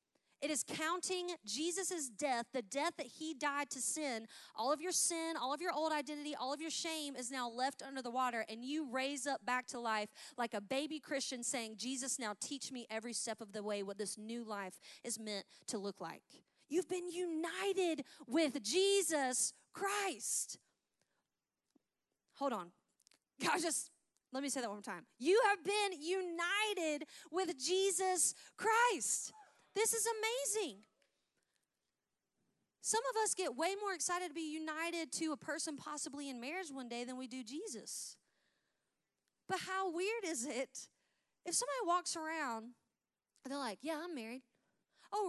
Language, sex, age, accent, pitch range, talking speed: English, female, 30-49, American, 245-345 Hz, 165 wpm